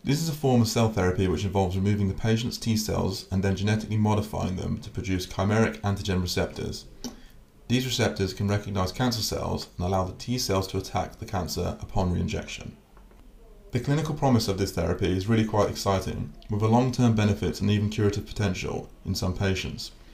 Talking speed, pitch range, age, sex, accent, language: 180 wpm, 95-110 Hz, 30-49, male, British, English